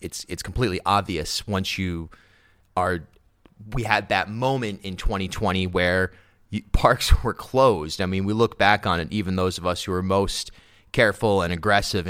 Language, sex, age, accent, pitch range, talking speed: English, male, 30-49, American, 90-105 Hz, 165 wpm